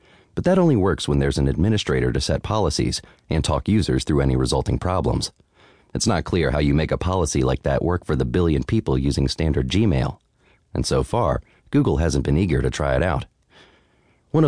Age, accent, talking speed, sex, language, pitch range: 30-49, American, 200 wpm, male, English, 70-100 Hz